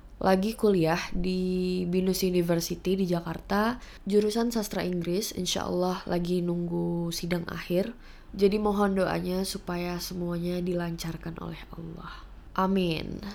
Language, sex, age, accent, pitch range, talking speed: English, female, 20-39, Indonesian, 180-215 Hz, 110 wpm